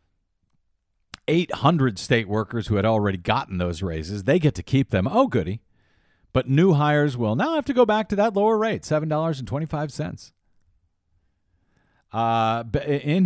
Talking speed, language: 140 wpm, English